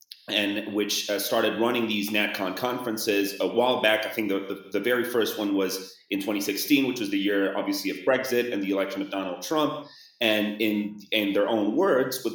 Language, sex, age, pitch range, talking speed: English, male, 30-49, 100-115 Hz, 205 wpm